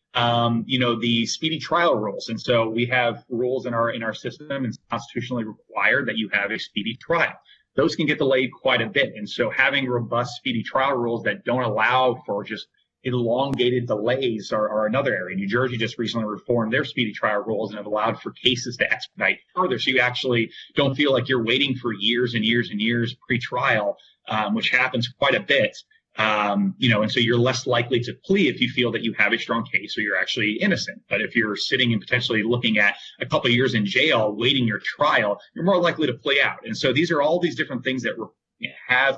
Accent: American